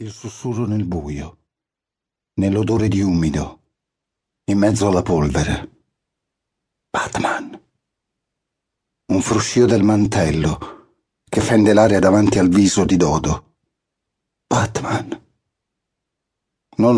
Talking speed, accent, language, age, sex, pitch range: 90 wpm, native, Italian, 50-69, male, 95-120 Hz